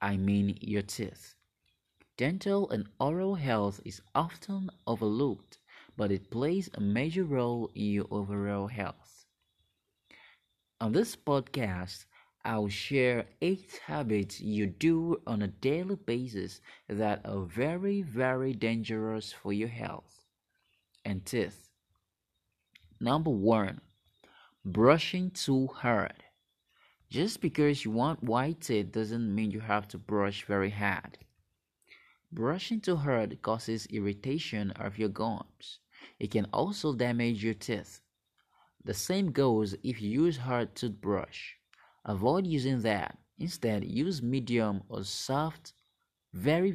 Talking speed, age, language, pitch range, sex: 120 wpm, 30-49, English, 100-145 Hz, male